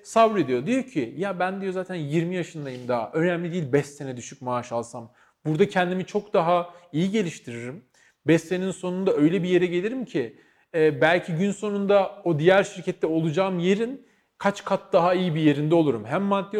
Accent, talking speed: native, 175 wpm